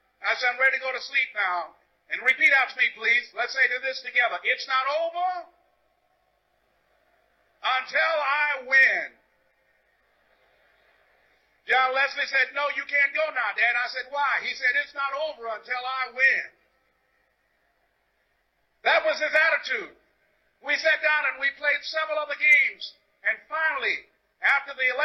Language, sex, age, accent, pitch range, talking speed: English, male, 50-69, American, 270-345 Hz, 150 wpm